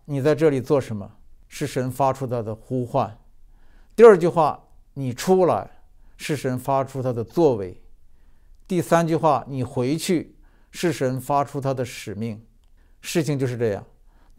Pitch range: 120-155 Hz